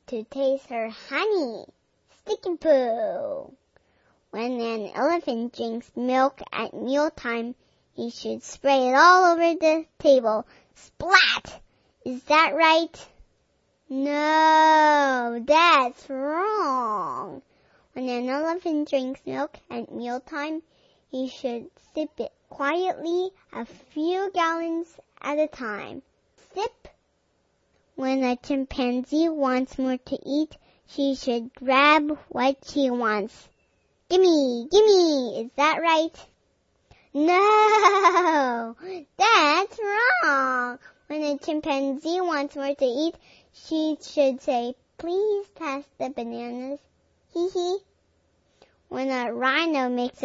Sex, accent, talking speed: male, American, 105 wpm